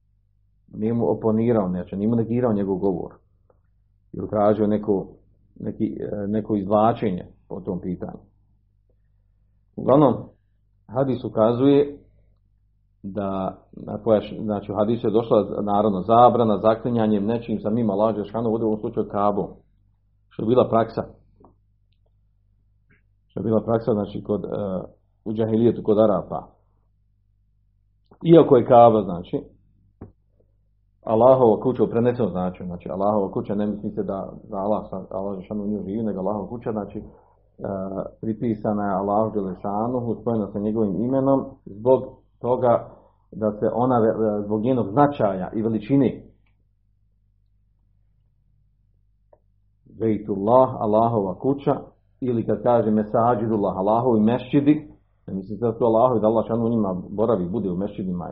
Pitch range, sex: 100-115 Hz, male